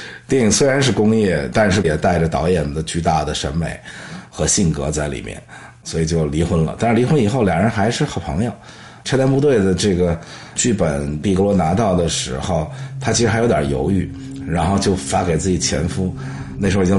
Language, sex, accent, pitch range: Chinese, male, native, 85-105 Hz